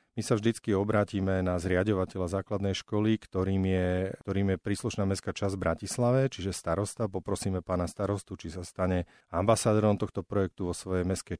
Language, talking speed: Slovak, 160 wpm